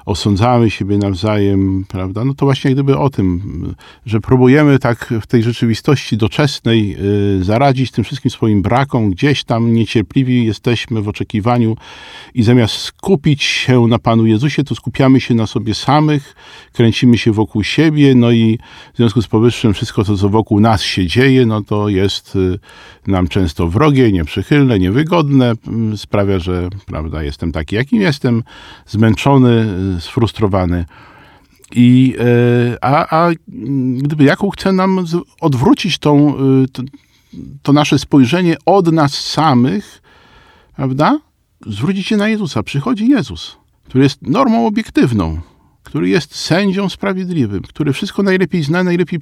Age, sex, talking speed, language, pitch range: 50-69, male, 135 wpm, Polish, 105-145 Hz